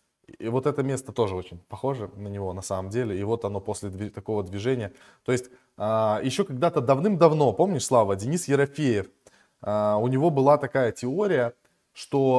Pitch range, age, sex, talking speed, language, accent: 120-150 Hz, 20-39, male, 160 wpm, Russian, native